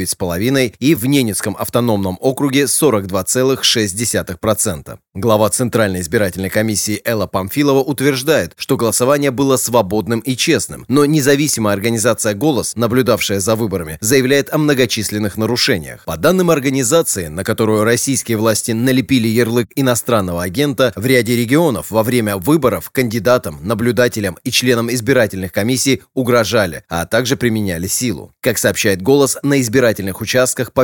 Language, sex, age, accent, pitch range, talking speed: Russian, male, 30-49, native, 110-135 Hz, 130 wpm